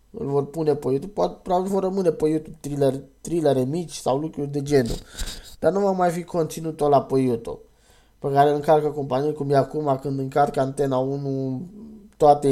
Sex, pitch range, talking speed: male, 140-175 Hz, 190 wpm